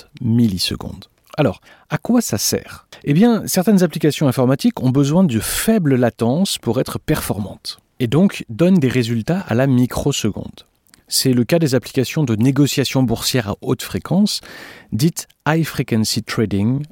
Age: 40-59